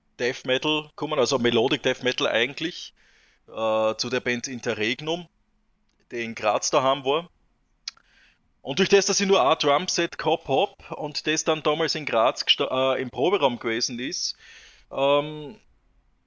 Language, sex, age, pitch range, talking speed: German, male, 20-39, 120-145 Hz, 150 wpm